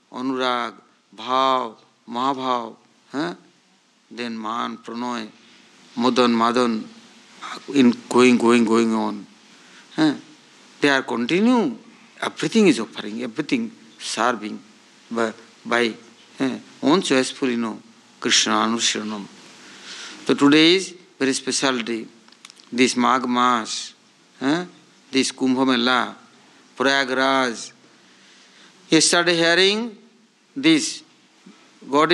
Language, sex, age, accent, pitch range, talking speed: English, male, 60-79, Indian, 120-200 Hz, 80 wpm